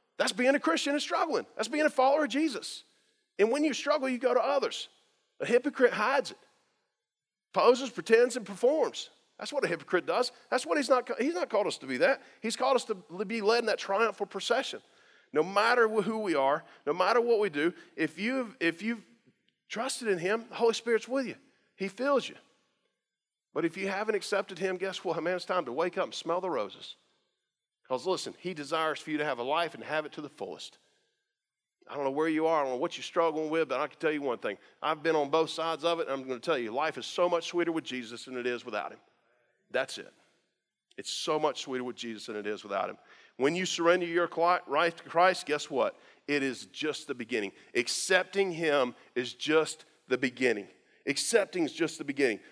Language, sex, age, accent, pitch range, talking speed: English, male, 40-59, American, 160-245 Hz, 225 wpm